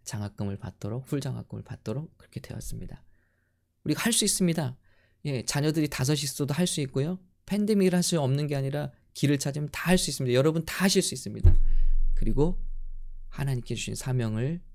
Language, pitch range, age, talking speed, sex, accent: English, 100-140 Hz, 20-39, 135 wpm, male, Korean